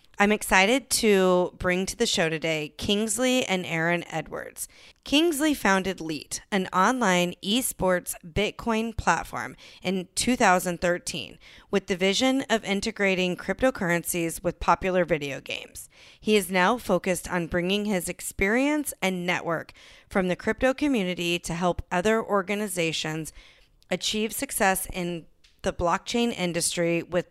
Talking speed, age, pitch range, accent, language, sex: 125 wpm, 30-49, 170-210 Hz, American, English, female